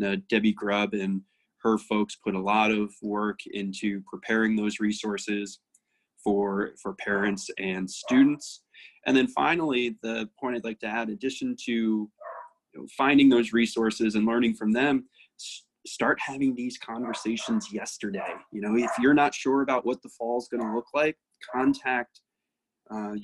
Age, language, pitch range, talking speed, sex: 20-39, English, 105-125 Hz, 165 wpm, male